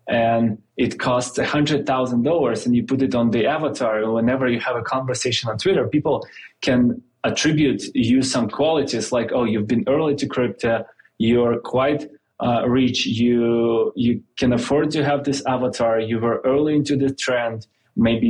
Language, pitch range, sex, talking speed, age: English, 110-130 Hz, male, 175 wpm, 20-39